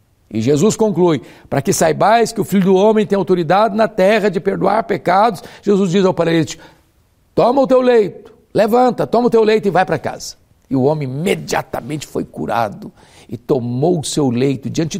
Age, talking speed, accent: 60-79, 190 wpm, Brazilian